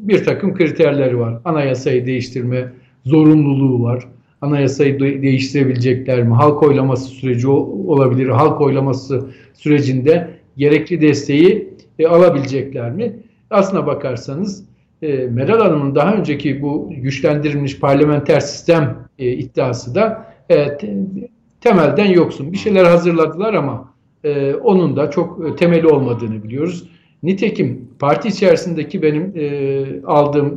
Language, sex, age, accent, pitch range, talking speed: Turkish, male, 50-69, native, 135-180 Hz, 100 wpm